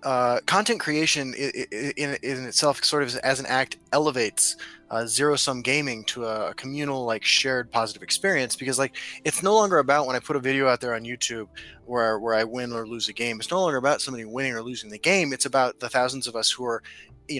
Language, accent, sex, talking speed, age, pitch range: English, American, male, 220 wpm, 20-39, 115-140 Hz